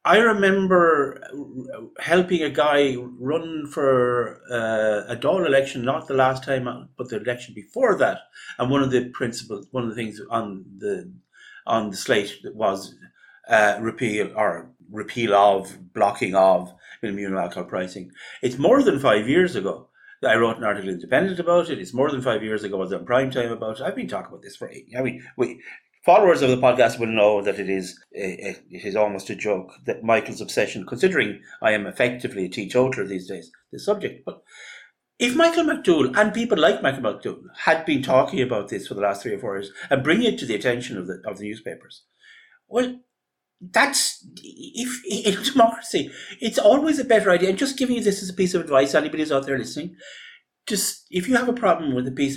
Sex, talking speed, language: male, 205 wpm, English